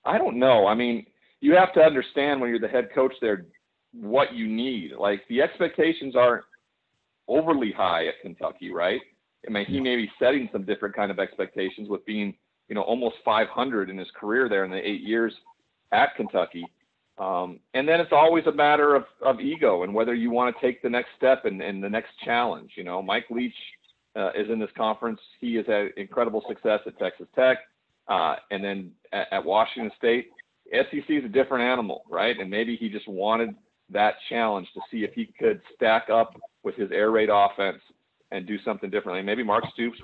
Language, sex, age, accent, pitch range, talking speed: English, male, 40-59, American, 110-150 Hz, 200 wpm